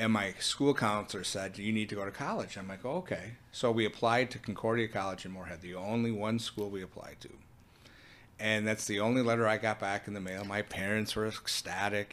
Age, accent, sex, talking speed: 30-49, American, male, 220 wpm